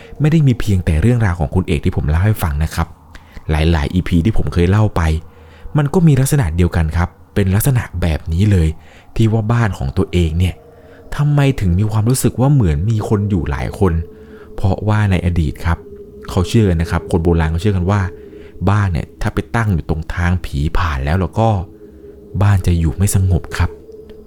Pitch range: 80-105 Hz